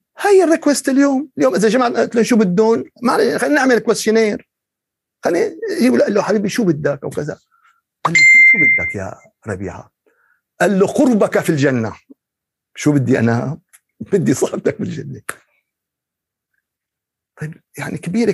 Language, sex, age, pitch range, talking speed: Arabic, male, 50-69, 155-255 Hz, 135 wpm